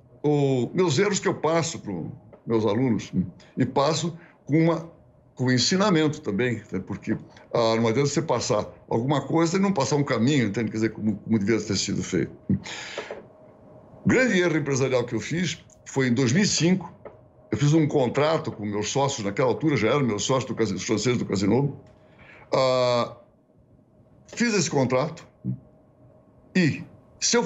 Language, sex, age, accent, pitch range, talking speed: English, male, 60-79, Brazilian, 115-165 Hz, 165 wpm